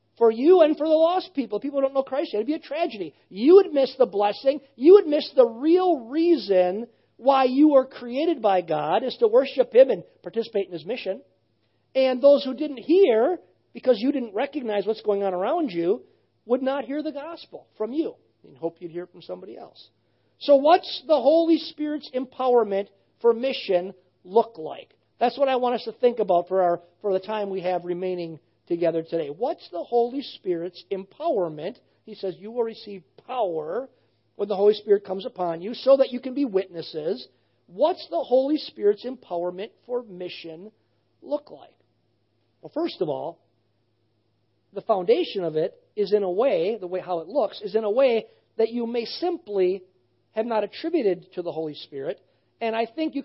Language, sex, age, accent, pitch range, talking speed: English, male, 50-69, American, 190-300 Hz, 190 wpm